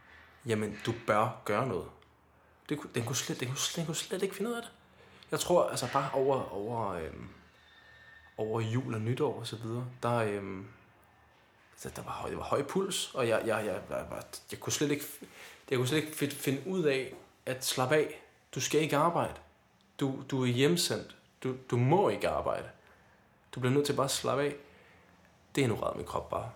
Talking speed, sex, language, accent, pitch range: 195 wpm, male, Danish, native, 110-140 Hz